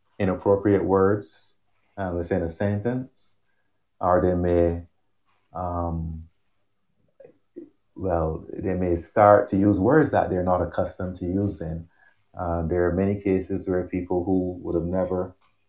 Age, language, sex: 30-49, English, male